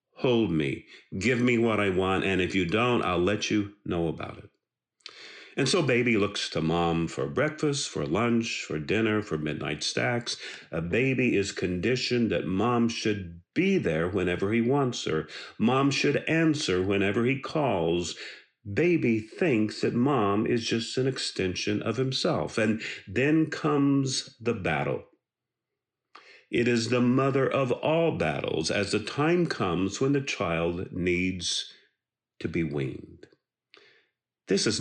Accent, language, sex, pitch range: American, English, male, 95-140 Hz